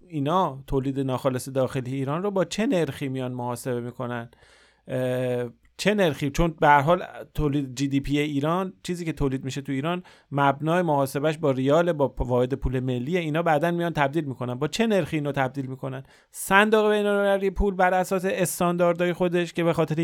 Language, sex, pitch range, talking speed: Persian, male, 125-160 Hz, 175 wpm